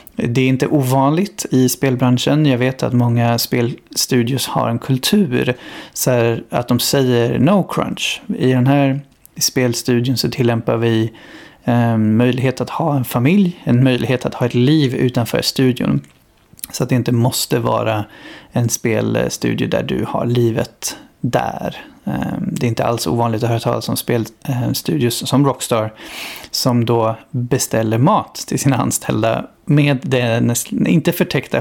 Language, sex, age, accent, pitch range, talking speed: Swedish, male, 30-49, native, 120-140 Hz, 145 wpm